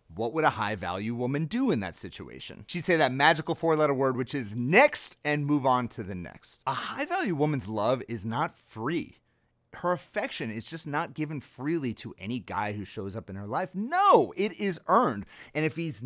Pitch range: 130-185 Hz